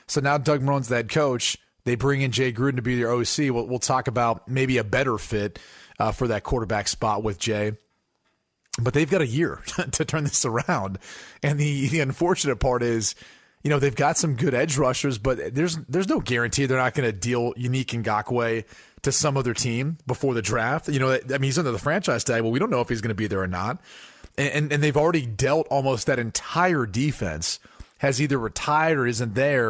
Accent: American